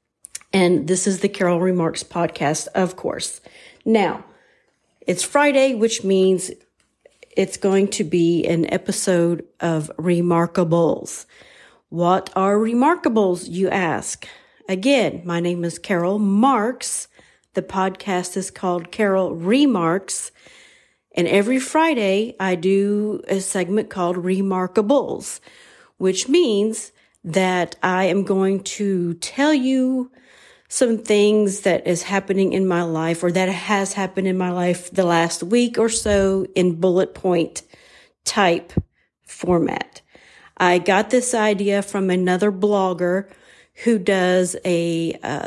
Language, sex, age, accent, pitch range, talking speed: English, female, 40-59, American, 180-210 Hz, 125 wpm